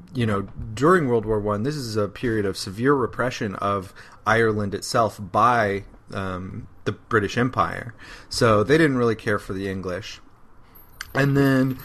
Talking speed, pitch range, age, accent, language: 155 wpm, 100-125 Hz, 30-49, American, English